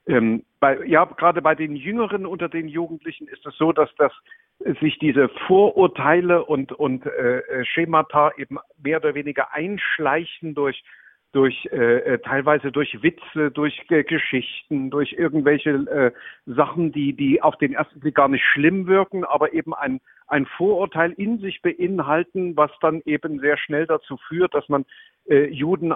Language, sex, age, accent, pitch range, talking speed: German, male, 50-69, German, 140-170 Hz, 160 wpm